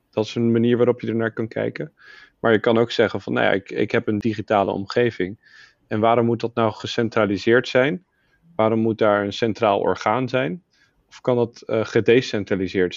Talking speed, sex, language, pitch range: 200 wpm, male, Dutch, 100-115 Hz